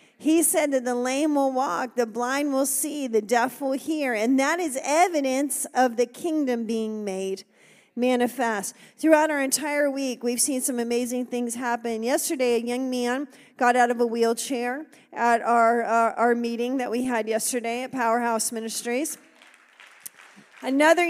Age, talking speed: 40-59, 160 wpm